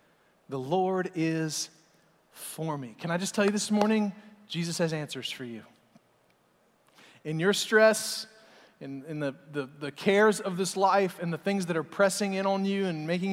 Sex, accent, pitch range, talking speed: male, American, 165-200 Hz, 180 wpm